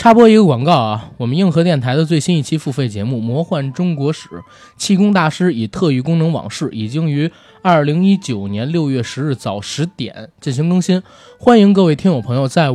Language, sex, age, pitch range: Chinese, male, 20-39, 130-180 Hz